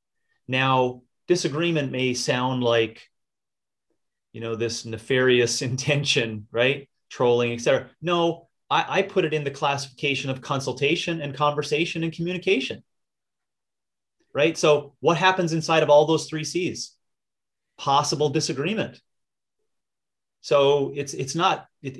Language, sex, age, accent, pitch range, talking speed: English, male, 30-49, American, 130-165 Hz, 125 wpm